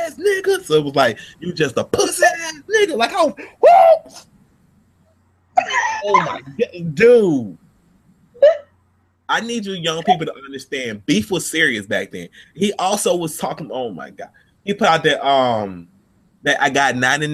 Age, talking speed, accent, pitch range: 30-49, 160 wpm, American, 135-165 Hz